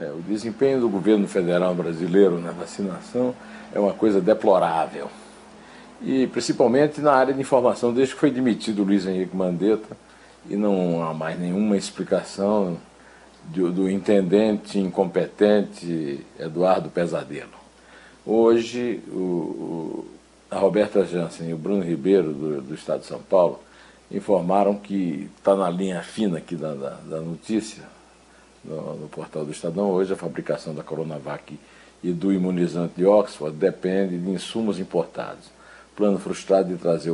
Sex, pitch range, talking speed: male, 90-115 Hz, 140 wpm